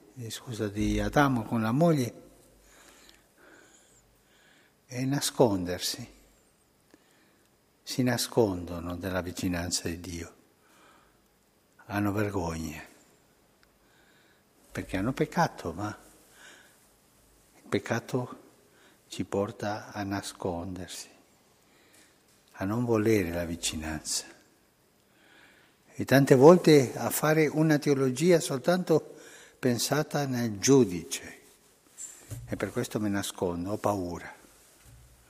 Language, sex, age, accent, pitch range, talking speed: Italian, male, 60-79, native, 95-130 Hz, 85 wpm